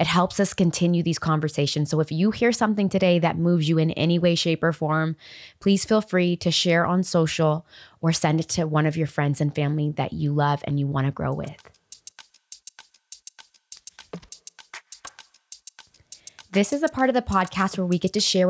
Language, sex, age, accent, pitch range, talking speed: English, female, 20-39, American, 155-185 Hz, 190 wpm